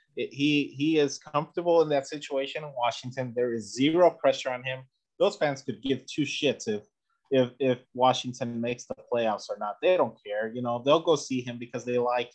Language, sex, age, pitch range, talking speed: English, male, 30-49, 115-145 Hz, 210 wpm